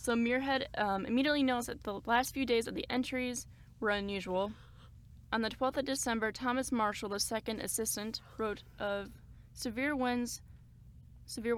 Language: English